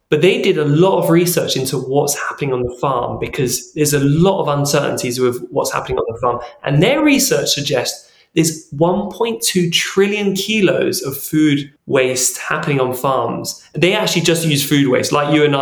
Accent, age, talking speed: British, 20-39, 185 wpm